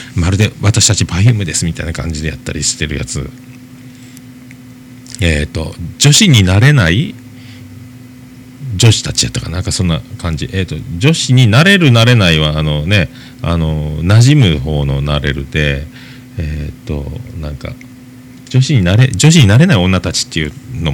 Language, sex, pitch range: Japanese, male, 95-130 Hz